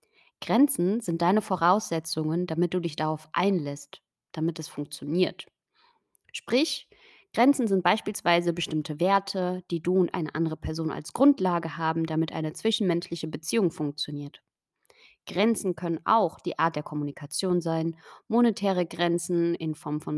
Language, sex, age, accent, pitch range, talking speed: German, female, 20-39, German, 160-200 Hz, 135 wpm